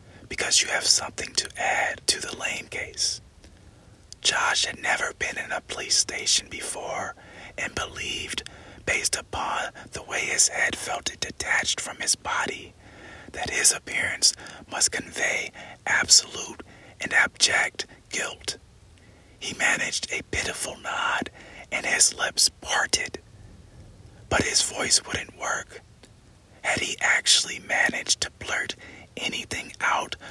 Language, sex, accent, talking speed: English, male, American, 125 wpm